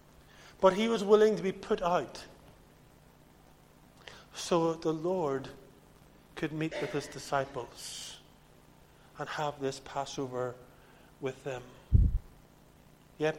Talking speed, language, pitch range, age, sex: 105 wpm, English, 135-160 Hz, 50-69, male